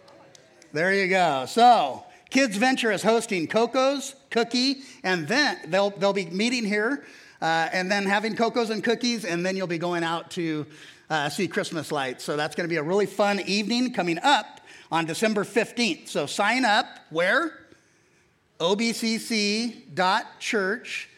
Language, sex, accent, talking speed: English, male, American, 155 wpm